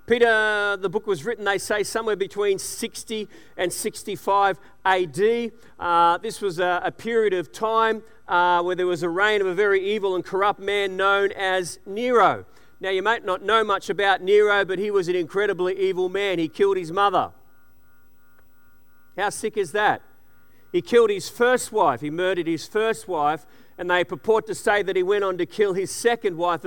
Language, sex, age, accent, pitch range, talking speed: English, male, 40-59, Australian, 185-220 Hz, 190 wpm